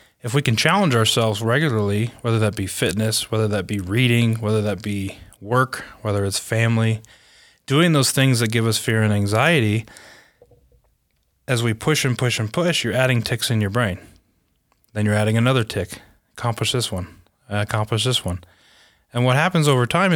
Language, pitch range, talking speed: English, 105-125 Hz, 175 wpm